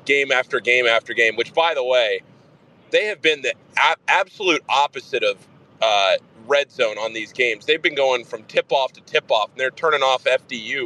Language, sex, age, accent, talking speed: English, male, 30-49, American, 195 wpm